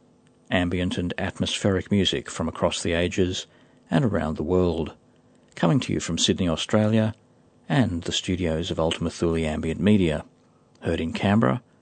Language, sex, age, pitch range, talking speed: English, male, 40-59, 80-105 Hz, 145 wpm